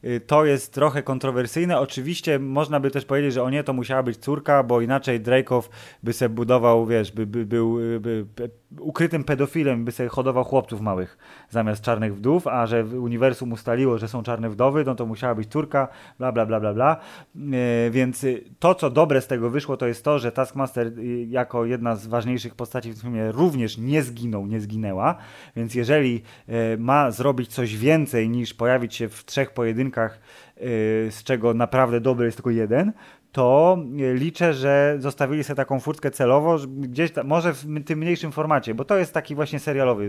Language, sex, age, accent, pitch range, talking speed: Polish, male, 20-39, native, 120-145 Hz, 180 wpm